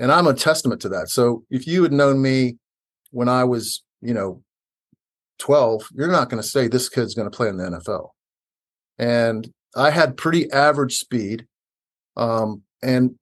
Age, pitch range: 50-69, 115-135 Hz